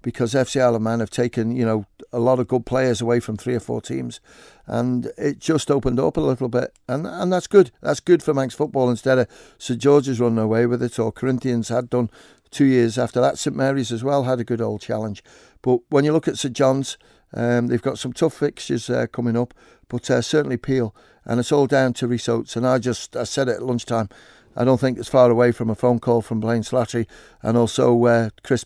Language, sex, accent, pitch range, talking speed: English, male, British, 115-130 Hz, 235 wpm